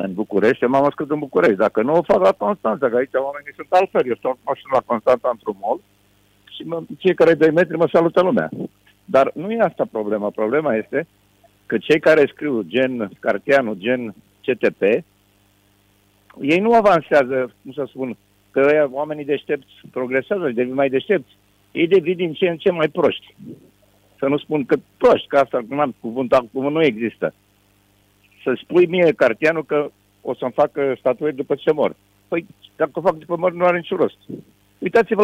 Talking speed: 175 wpm